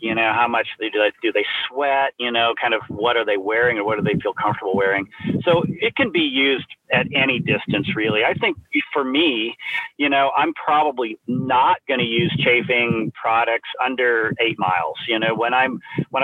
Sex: male